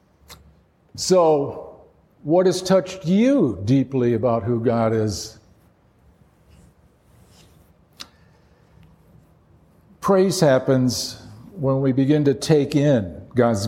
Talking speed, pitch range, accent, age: 85 wpm, 110-170 Hz, American, 50-69